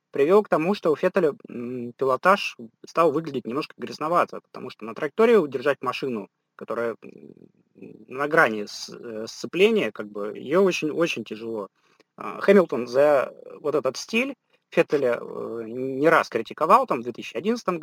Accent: native